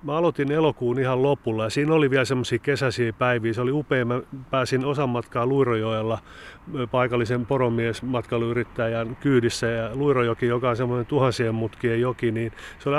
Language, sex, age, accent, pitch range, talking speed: Finnish, male, 30-49, native, 115-145 Hz, 155 wpm